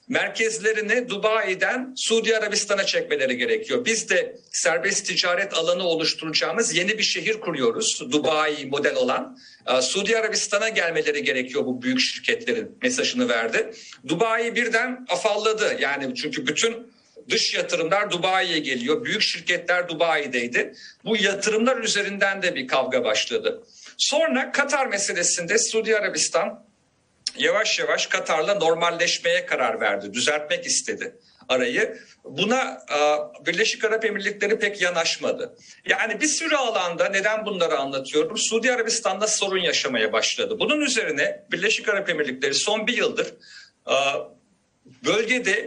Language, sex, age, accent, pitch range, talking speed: Turkish, male, 50-69, native, 180-260 Hz, 115 wpm